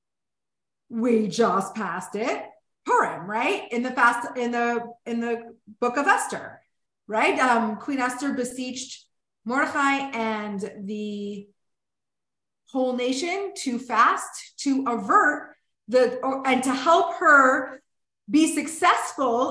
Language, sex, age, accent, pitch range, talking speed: English, female, 30-49, American, 230-280 Hz, 115 wpm